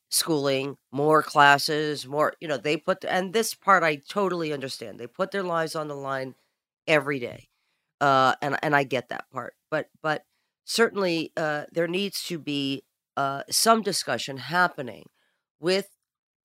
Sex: female